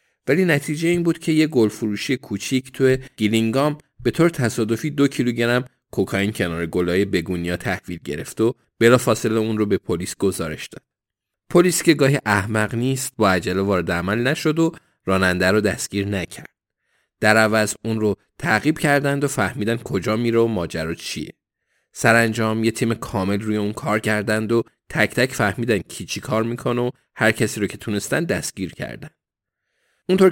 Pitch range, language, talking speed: 100-130 Hz, Persian, 165 wpm